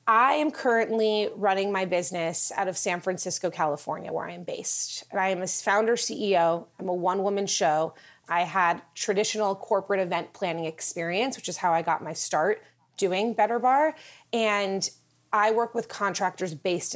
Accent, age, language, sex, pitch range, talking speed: American, 30-49, English, female, 180-220 Hz, 170 wpm